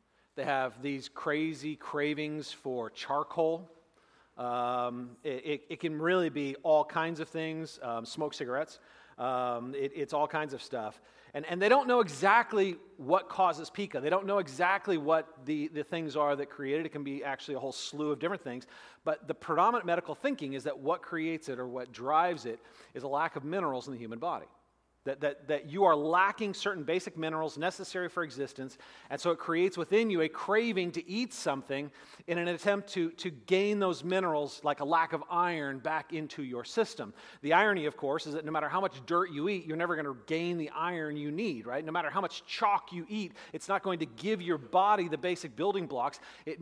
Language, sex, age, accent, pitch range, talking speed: English, male, 40-59, American, 145-180 Hz, 210 wpm